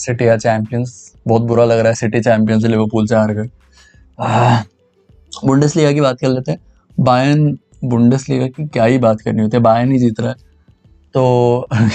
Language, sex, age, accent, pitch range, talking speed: Hindi, male, 20-39, native, 110-135 Hz, 180 wpm